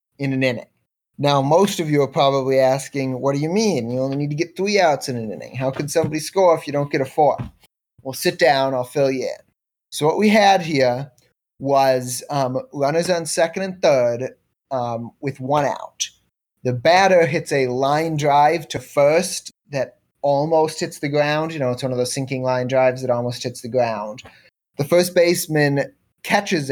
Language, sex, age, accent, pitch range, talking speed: English, male, 30-49, American, 130-160 Hz, 200 wpm